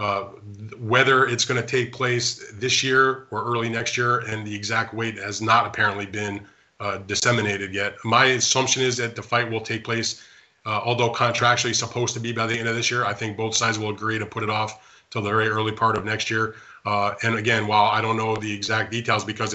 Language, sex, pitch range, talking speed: English, male, 105-120 Hz, 225 wpm